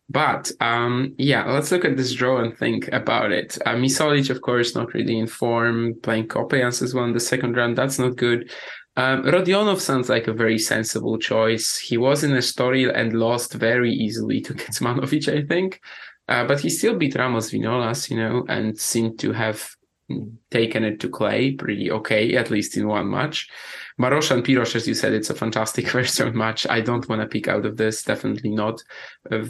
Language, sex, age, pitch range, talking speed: English, male, 20-39, 110-130 Hz, 200 wpm